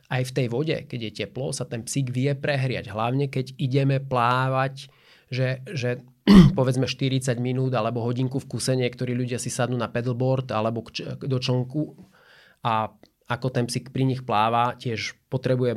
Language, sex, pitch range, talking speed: Slovak, male, 120-135 Hz, 160 wpm